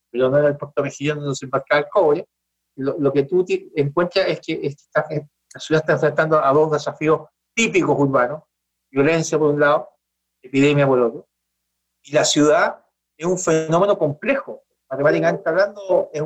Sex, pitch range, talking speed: male, 150-220 Hz, 165 wpm